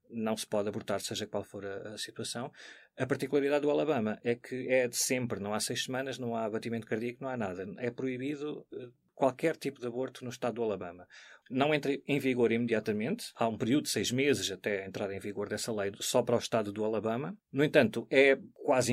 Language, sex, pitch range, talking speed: Portuguese, male, 110-140 Hz, 215 wpm